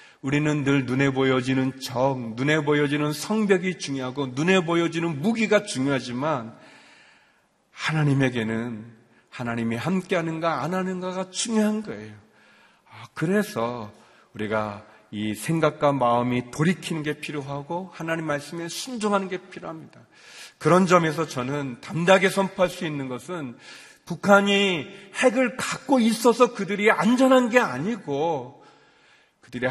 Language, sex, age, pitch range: Korean, male, 40-59, 130-185 Hz